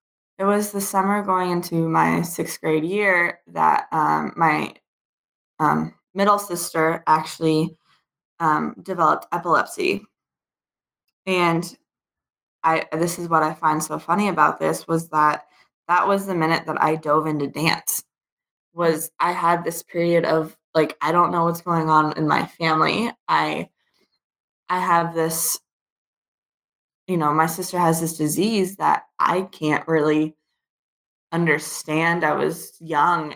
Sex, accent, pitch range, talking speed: female, American, 155-175 Hz, 140 wpm